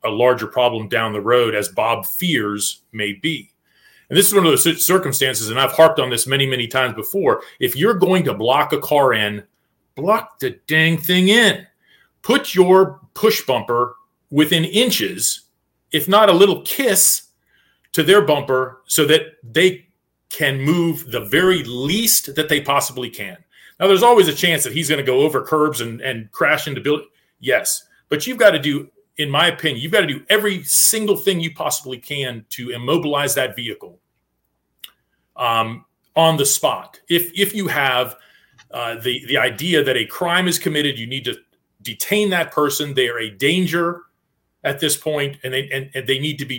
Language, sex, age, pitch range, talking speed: English, male, 40-59, 125-180 Hz, 185 wpm